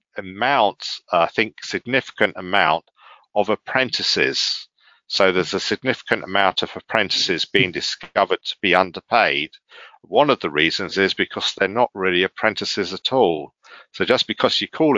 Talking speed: 150 wpm